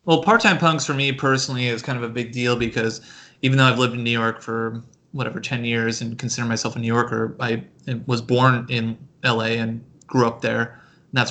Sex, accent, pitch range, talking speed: male, American, 115-135 Hz, 210 wpm